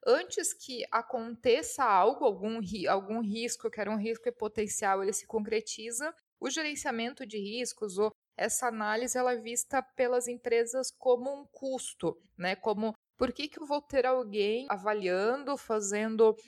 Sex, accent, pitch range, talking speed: female, Brazilian, 215-265 Hz, 155 wpm